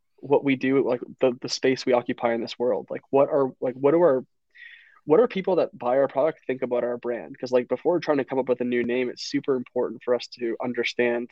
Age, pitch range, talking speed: 20-39, 120-135 Hz, 260 wpm